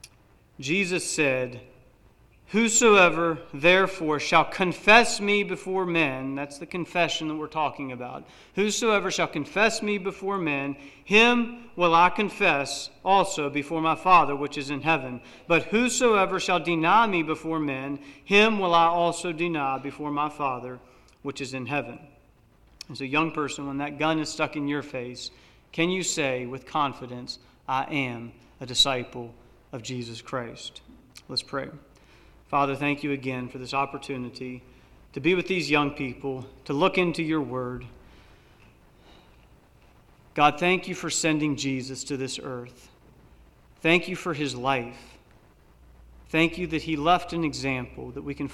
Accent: American